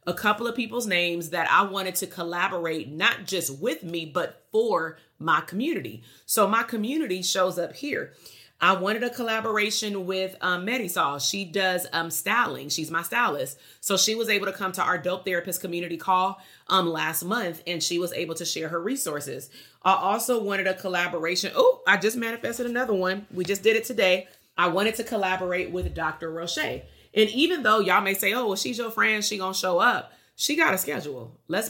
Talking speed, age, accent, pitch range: 200 wpm, 30-49, American, 170-215 Hz